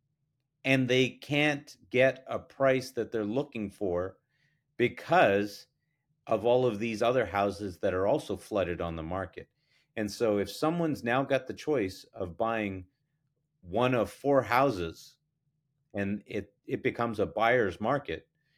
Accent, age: American, 40-59